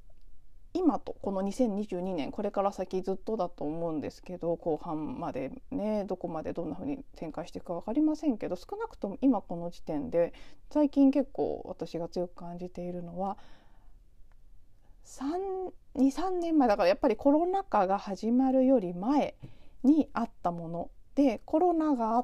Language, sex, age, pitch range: Japanese, female, 40-59, 180-275 Hz